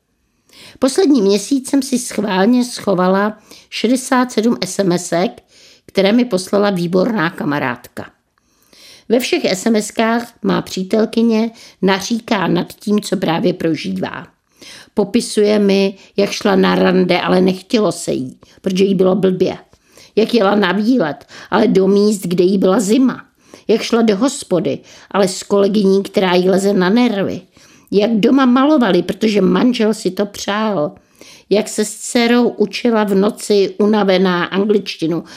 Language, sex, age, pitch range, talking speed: Czech, female, 50-69, 190-235 Hz, 130 wpm